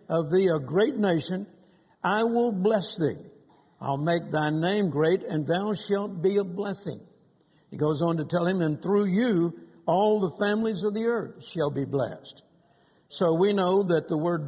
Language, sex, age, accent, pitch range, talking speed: English, male, 60-79, American, 160-200 Hz, 180 wpm